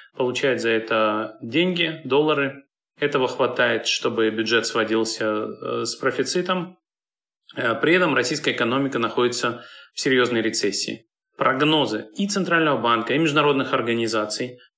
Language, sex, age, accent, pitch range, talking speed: Russian, male, 30-49, native, 115-145 Hz, 110 wpm